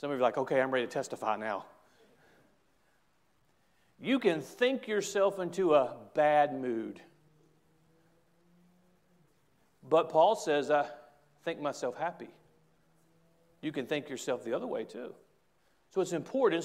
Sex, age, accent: male, 40-59, American